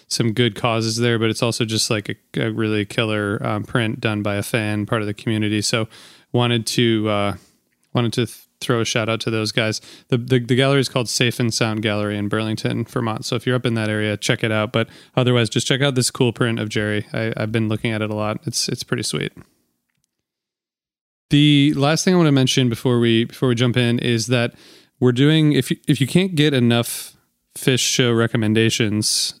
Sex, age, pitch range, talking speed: male, 20-39, 110-125 Hz, 220 wpm